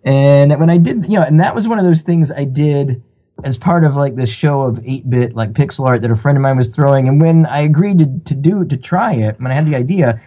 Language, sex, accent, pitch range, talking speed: English, male, American, 125-170 Hz, 285 wpm